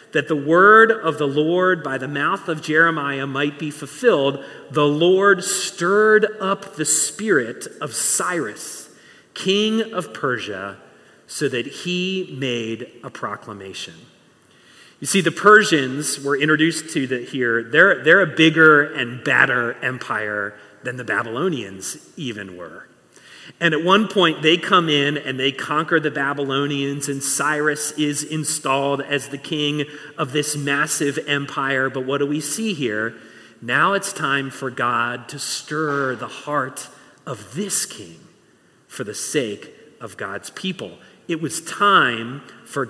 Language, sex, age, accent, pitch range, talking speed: English, male, 40-59, American, 135-165 Hz, 145 wpm